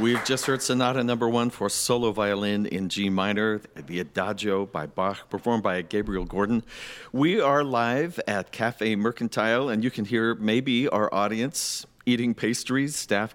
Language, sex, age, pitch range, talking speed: English, male, 50-69, 100-130 Hz, 160 wpm